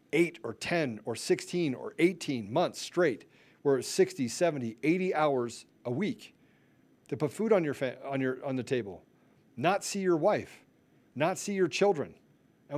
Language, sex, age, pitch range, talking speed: English, male, 40-59, 135-195 Hz, 155 wpm